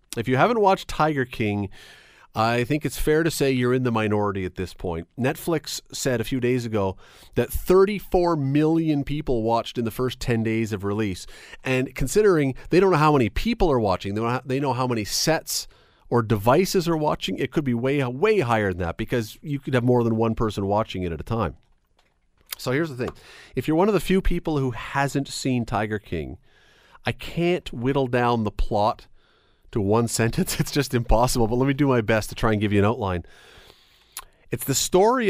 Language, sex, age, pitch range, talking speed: English, male, 40-59, 115-155 Hz, 205 wpm